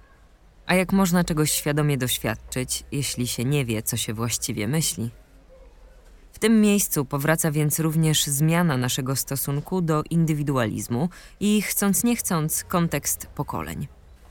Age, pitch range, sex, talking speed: 20-39, 130-170 Hz, female, 130 wpm